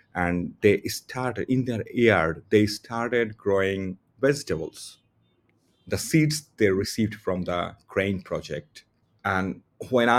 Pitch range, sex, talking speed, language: 90-110 Hz, male, 120 wpm, English